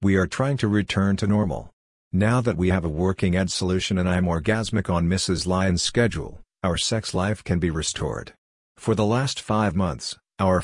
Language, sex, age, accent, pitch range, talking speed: English, male, 50-69, American, 90-105 Hz, 190 wpm